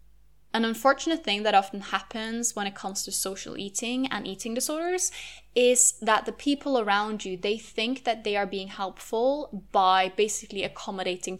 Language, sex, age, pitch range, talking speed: English, female, 10-29, 195-240 Hz, 165 wpm